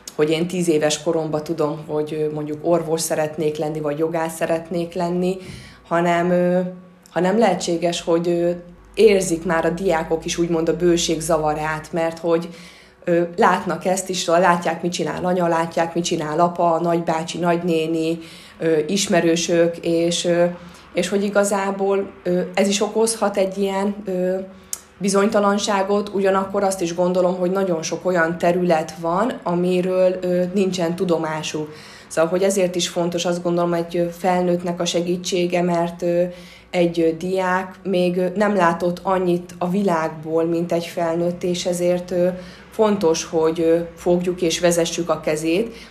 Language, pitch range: Hungarian, 165-180 Hz